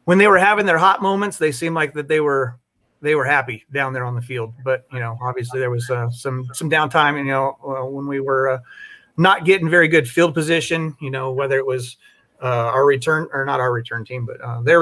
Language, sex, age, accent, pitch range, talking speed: English, male, 30-49, American, 130-165 Hz, 245 wpm